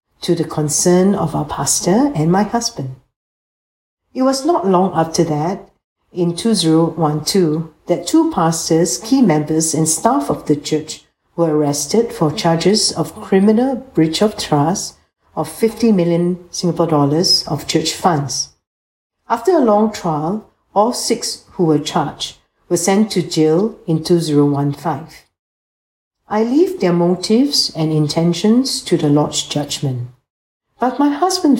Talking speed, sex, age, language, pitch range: 135 wpm, female, 60-79, English, 150-190 Hz